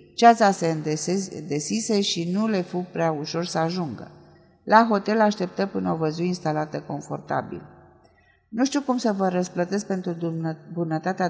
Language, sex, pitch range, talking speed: Romanian, female, 165-225 Hz, 155 wpm